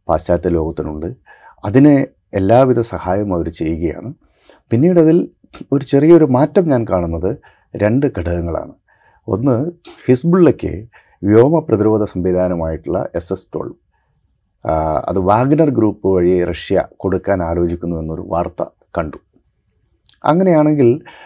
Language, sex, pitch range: Malayalam, male, 85-120 Hz